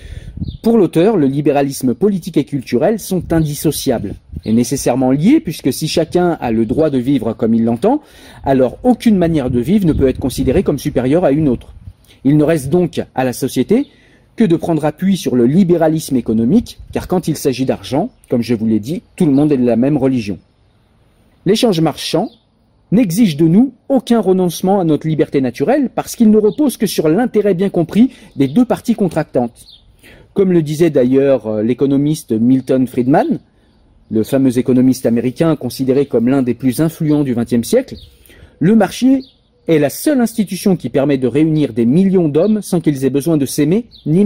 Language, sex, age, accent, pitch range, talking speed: French, male, 40-59, French, 130-190 Hz, 180 wpm